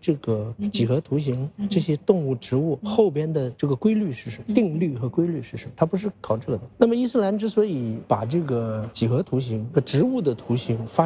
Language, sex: Chinese, male